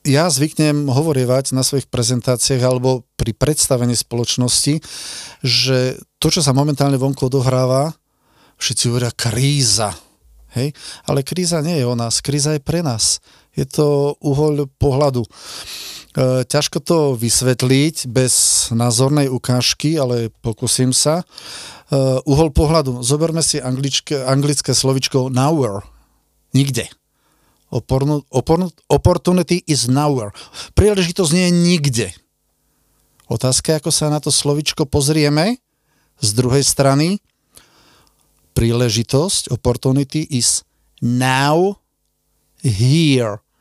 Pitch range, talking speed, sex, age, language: 125-150 Hz, 100 wpm, male, 40-59, Czech